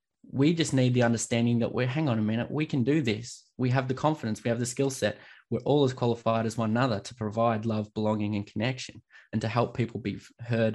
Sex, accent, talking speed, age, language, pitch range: male, Australian, 240 wpm, 20-39, English, 115-135 Hz